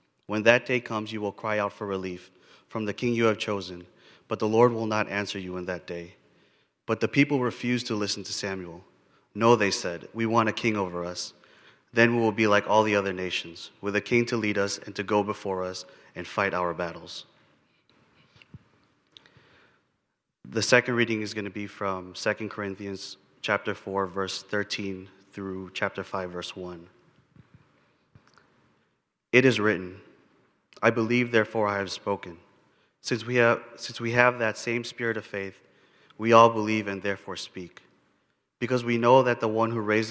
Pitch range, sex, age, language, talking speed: 95-115 Hz, male, 30-49, English, 180 wpm